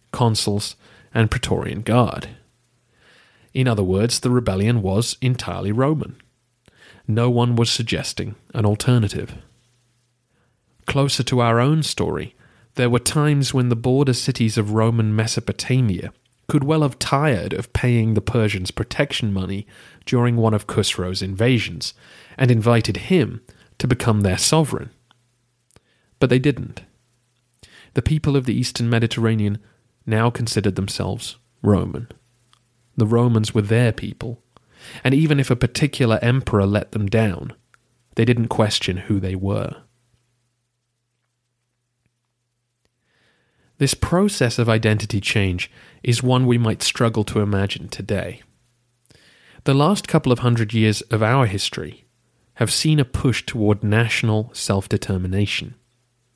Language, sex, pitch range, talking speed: English, male, 110-125 Hz, 125 wpm